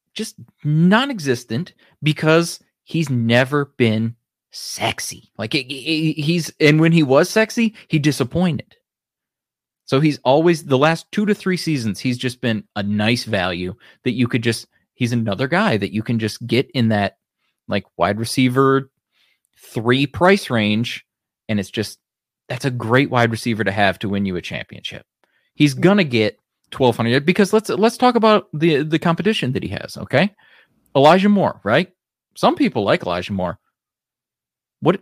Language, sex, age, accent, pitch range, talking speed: English, male, 30-49, American, 115-170 Hz, 160 wpm